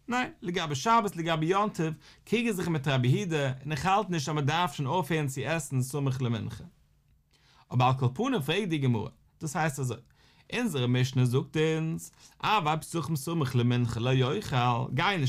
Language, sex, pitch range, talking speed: English, male, 125-180 Hz, 135 wpm